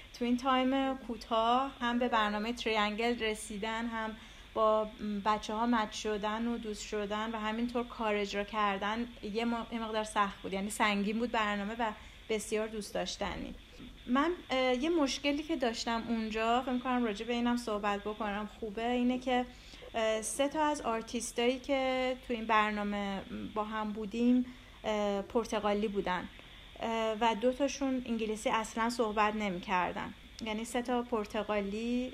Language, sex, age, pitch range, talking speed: English, female, 30-49, 210-240 Hz, 140 wpm